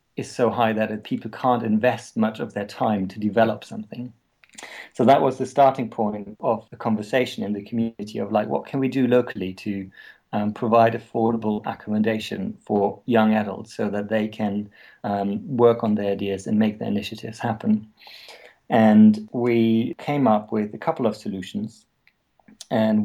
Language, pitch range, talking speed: English, 105-115 Hz, 170 wpm